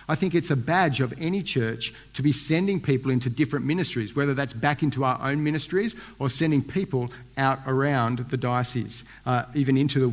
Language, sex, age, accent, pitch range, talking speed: English, male, 50-69, Australian, 120-150 Hz, 195 wpm